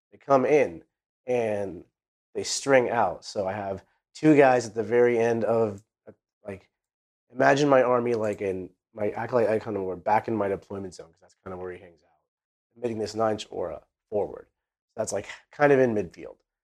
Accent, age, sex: American, 30-49, male